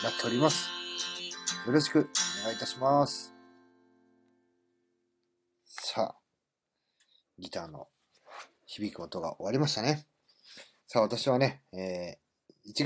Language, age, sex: Japanese, 40-59, male